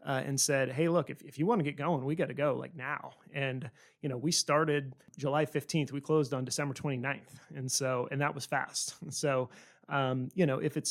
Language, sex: English, male